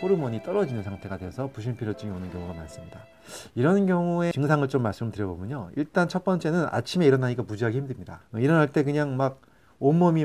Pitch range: 105-165 Hz